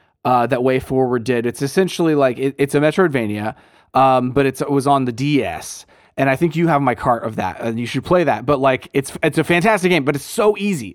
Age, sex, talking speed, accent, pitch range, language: 30-49, male, 245 wpm, American, 125-160 Hz, English